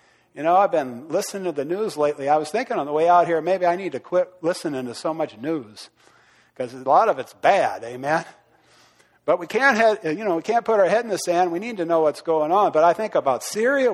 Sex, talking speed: male, 260 wpm